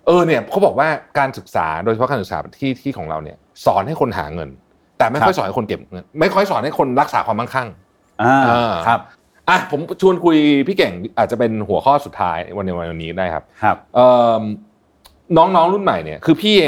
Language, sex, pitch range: Thai, male, 105-140 Hz